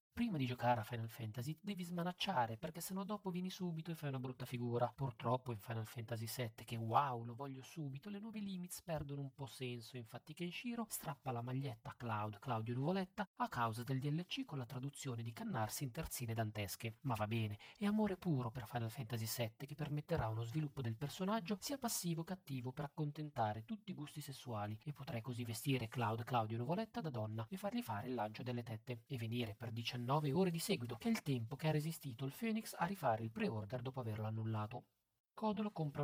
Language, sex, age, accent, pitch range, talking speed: Italian, male, 40-59, native, 115-160 Hz, 205 wpm